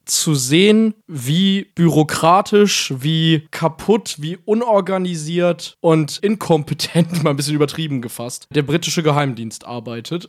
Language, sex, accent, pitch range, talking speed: German, male, German, 150-190 Hz, 110 wpm